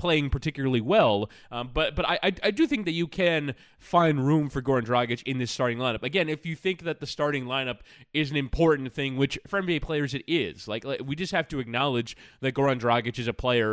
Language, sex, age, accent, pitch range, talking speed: English, male, 20-39, American, 120-155 Hz, 230 wpm